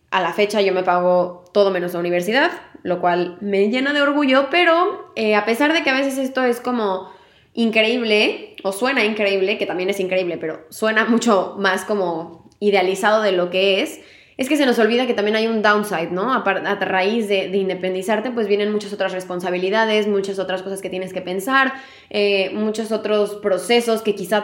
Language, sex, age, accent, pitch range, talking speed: Spanish, female, 20-39, Mexican, 190-235 Hz, 195 wpm